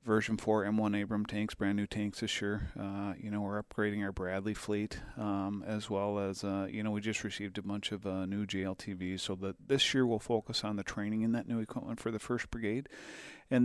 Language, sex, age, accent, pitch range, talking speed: English, male, 40-59, American, 105-120 Hz, 225 wpm